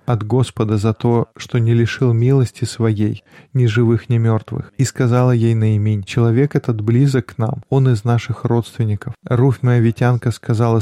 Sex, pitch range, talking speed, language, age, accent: male, 110-125 Hz, 165 wpm, Russian, 20-39, native